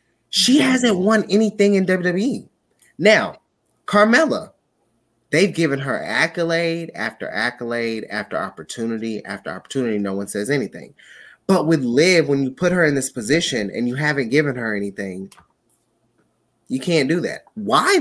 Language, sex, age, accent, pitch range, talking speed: English, male, 20-39, American, 125-185 Hz, 145 wpm